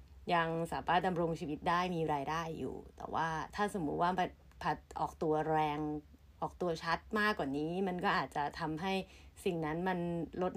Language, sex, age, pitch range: Thai, female, 30-49, 145-195 Hz